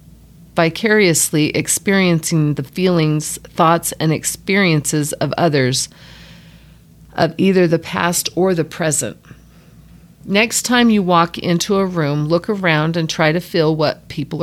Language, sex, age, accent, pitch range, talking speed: English, female, 40-59, American, 155-180 Hz, 130 wpm